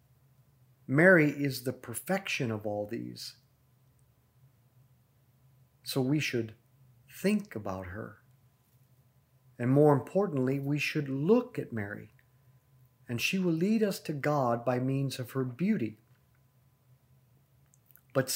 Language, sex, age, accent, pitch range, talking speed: English, male, 50-69, American, 125-150 Hz, 110 wpm